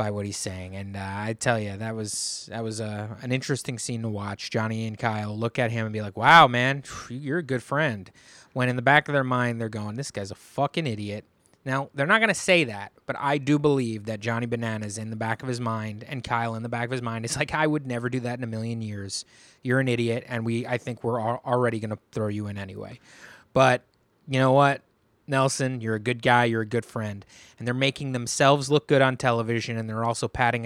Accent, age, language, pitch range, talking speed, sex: American, 20-39, English, 115-140 Hz, 250 wpm, male